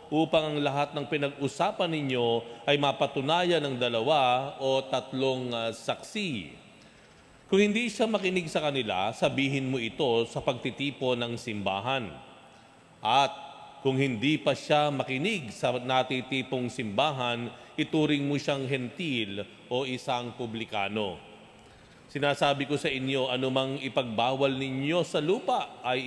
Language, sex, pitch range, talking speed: Filipino, male, 120-145 Hz, 120 wpm